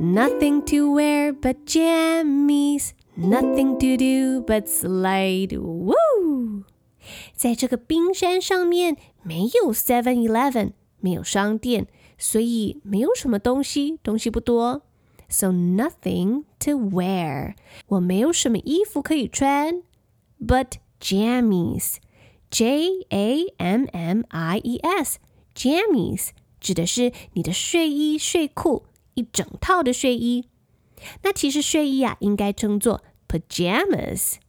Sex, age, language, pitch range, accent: female, 20-39, Chinese, 205-290 Hz, American